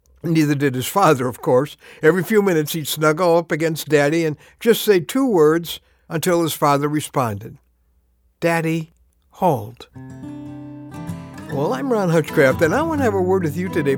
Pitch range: 130-205 Hz